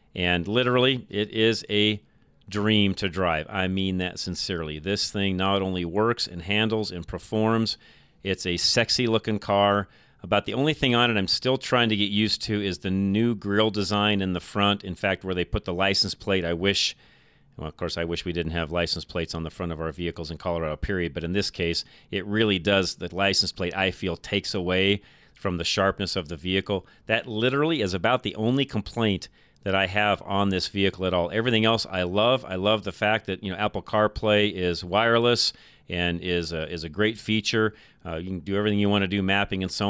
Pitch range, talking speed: 90-105 Hz, 215 wpm